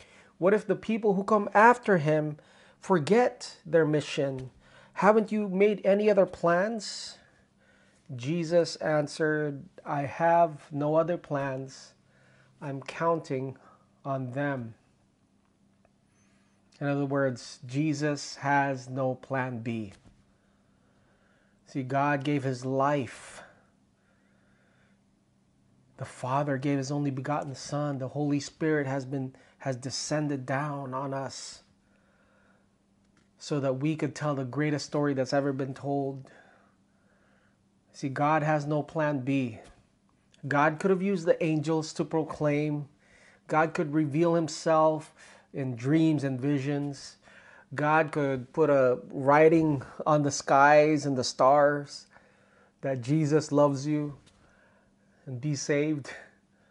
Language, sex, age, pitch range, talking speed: English, male, 30-49, 135-155 Hz, 115 wpm